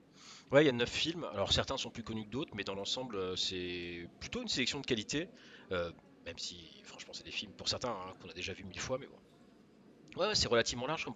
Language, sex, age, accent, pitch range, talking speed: French, male, 30-49, French, 95-125 Hz, 245 wpm